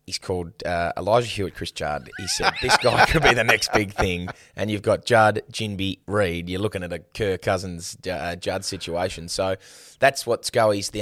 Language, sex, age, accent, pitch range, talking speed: English, male, 20-39, Australian, 90-105 Hz, 200 wpm